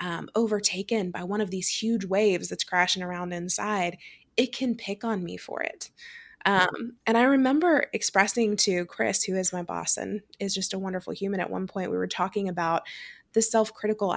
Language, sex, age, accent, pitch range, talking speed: English, female, 20-39, American, 190-240 Hz, 190 wpm